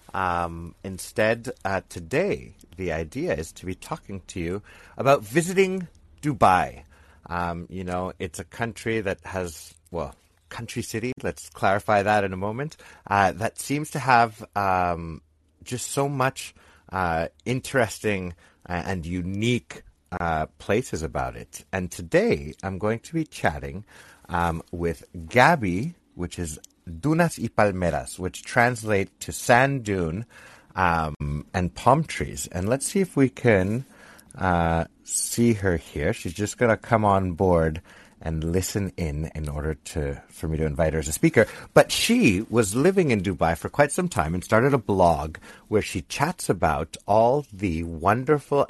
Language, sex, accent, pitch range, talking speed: English, male, American, 85-115 Hz, 155 wpm